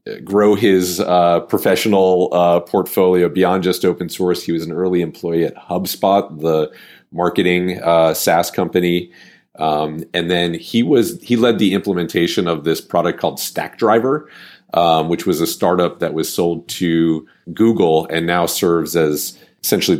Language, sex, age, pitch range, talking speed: English, male, 40-59, 80-95 Hz, 155 wpm